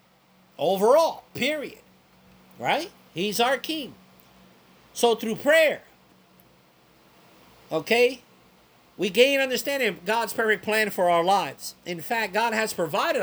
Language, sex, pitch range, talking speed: English, male, 155-245 Hz, 115 wpm